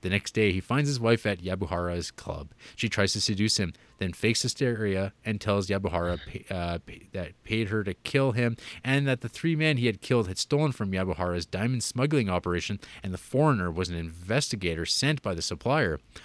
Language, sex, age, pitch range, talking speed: English, male, 30-49, 95-120 Hz, 195 wpm